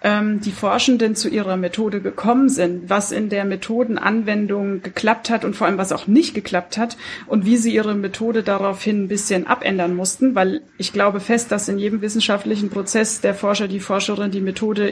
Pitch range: 200-225 Hz